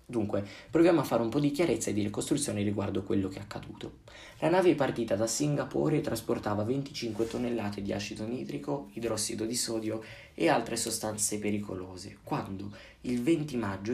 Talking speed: 170 wpm